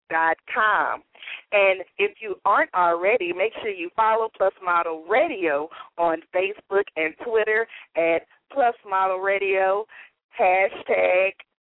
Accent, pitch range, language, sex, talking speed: American, 175-220 Hz, English, female, 120 wpm